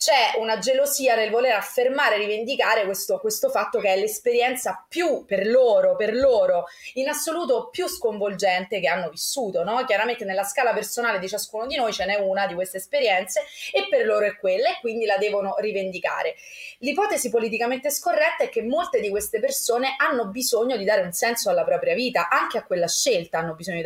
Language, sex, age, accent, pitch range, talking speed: Italian, female, 30-49, native, 200-275 Hz, 185 wpm